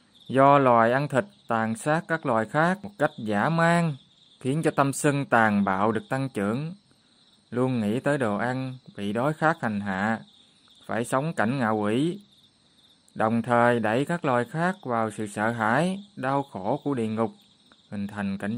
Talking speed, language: 180 wpm, Vietnamese